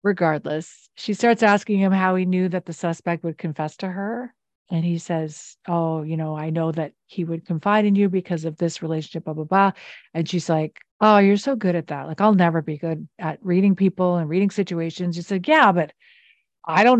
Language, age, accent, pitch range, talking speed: English, 50-69, American, 170-215 Hz, 220 wpm